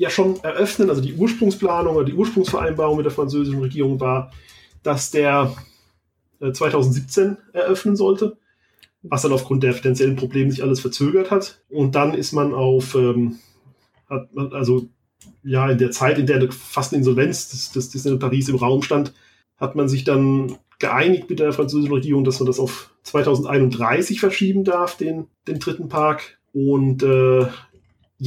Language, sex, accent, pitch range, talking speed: German, male, German, 130-150 Hz, 165 wpm